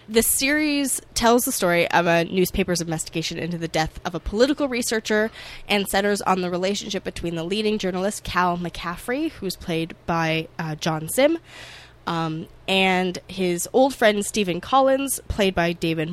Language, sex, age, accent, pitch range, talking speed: English, female, 10-29, American, 165-215 Hz, 160 wpm